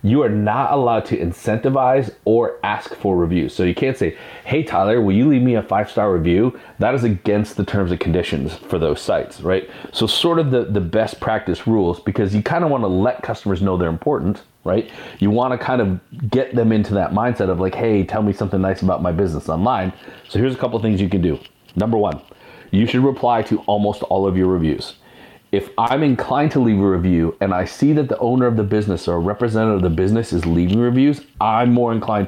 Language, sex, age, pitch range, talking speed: English, male, 30-49, 95-120 Hz, 230 wpm